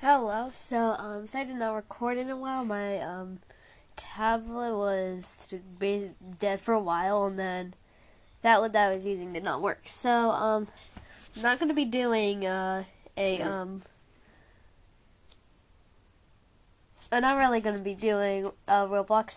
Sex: female